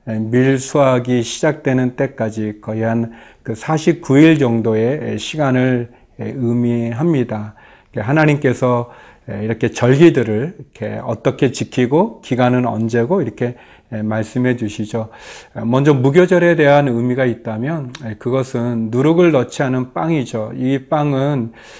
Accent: native